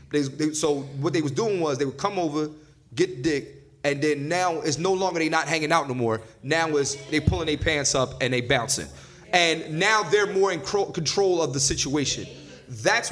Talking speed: 220 wpm